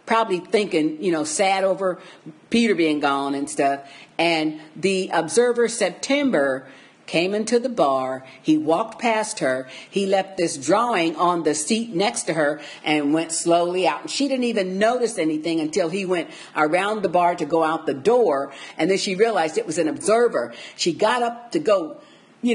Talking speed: 180 wpm